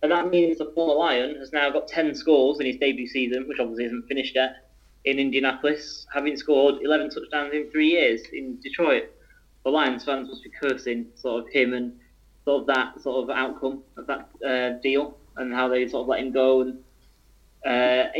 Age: 20-39